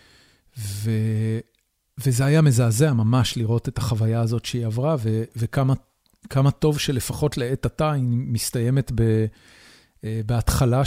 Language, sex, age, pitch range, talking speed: Hebrew, male, 40-59, 110-130 Hz, 115 wpm